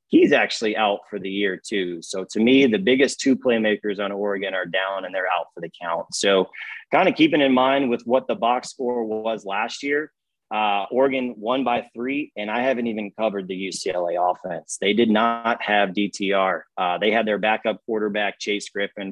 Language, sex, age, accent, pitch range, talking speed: English, male, 30-49, American, 100-130 Hz, 200 wpm